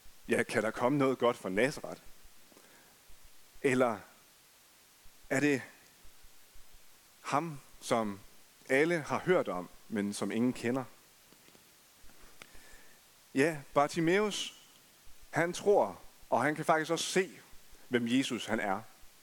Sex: male